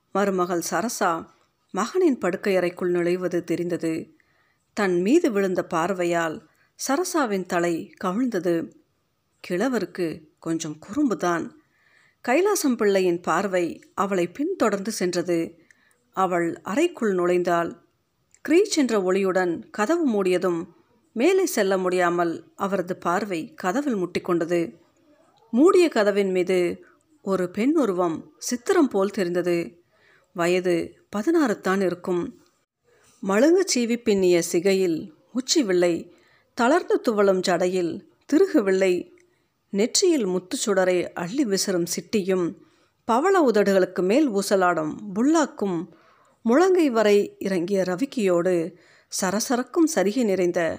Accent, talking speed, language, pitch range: native, 85 wpm, Tamil, 175-250 Hz